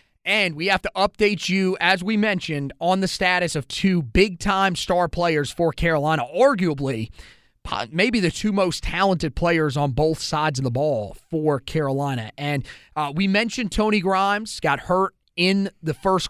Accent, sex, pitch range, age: American, male, 150-185 Hz, 30-49